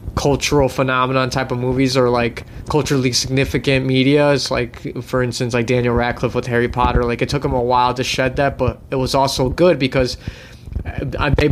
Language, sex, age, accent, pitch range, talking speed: English, male, 20-39, American, 100-135 Hz, 190 wpm